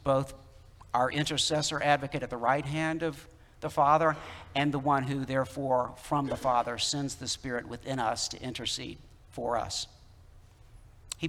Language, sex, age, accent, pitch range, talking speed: English, male, 60-79, American, 115-155 Hz, 155 wpm